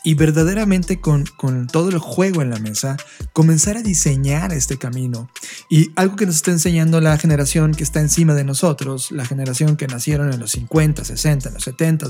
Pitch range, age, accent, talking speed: 140-170 Hz, 30-49, Mexican, 190 wpm